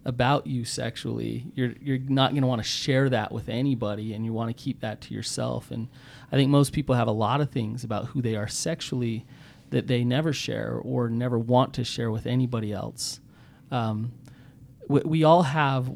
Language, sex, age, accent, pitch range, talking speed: English, male, 30-49, American, 120-140 Hz, 205 wpm